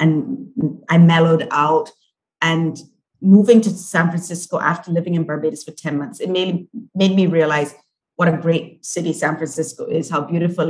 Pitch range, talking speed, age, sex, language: 155-190 Hz, 170 wpm, 30-49, female, English